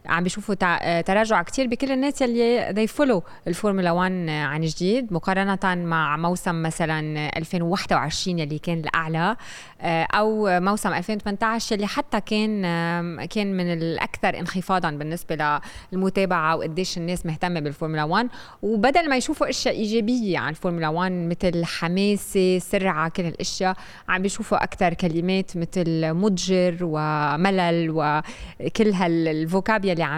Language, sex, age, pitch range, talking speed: Arabic, female, 20-39, 170-210 Hz, 120 wpm